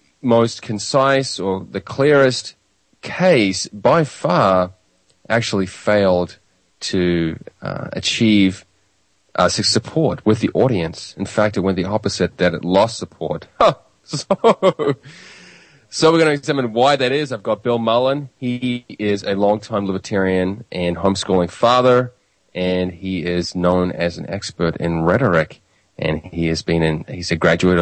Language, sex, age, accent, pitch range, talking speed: English, male, 30-49, Australian, 90-110 Hz, 145 wpm